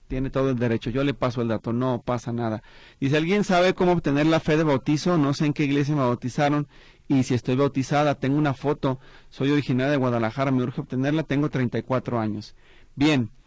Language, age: Spanish, 30-49